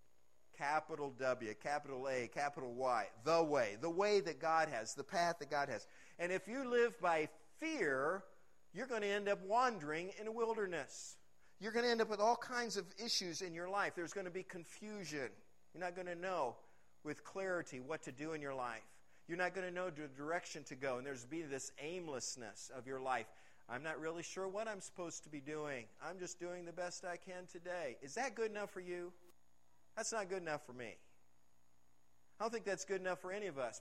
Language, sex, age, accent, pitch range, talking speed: English, male, 50-69, American, 145-205 Hz, 220 wpm